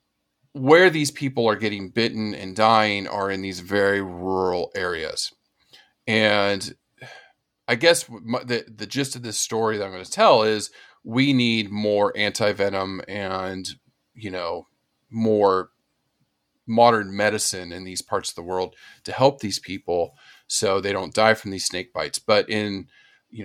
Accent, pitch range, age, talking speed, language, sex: American, 100-125 Hz, 40-59, 155 wpm, English, male